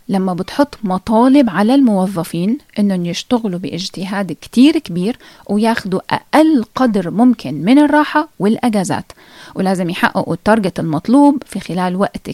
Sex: female